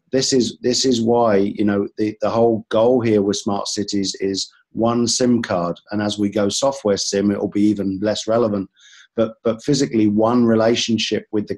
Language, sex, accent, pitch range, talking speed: English, male, British, 105-115 Hz, 195 wpm